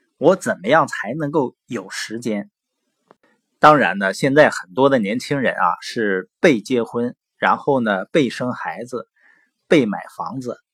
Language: Chinese